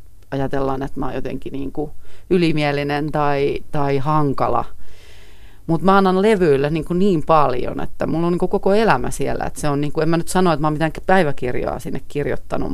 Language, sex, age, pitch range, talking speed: Finnish, female, 30-49, 105-170 Hz, 200 wpm